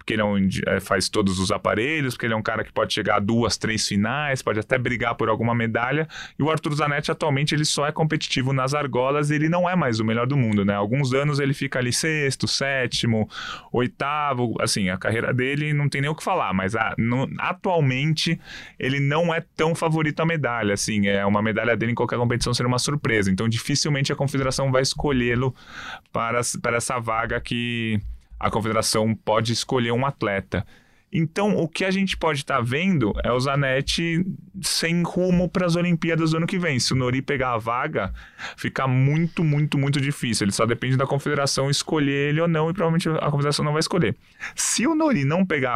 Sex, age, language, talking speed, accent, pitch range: male, 20-39, Portuguese, 205 wpm, Brazilian, 115-155 Hz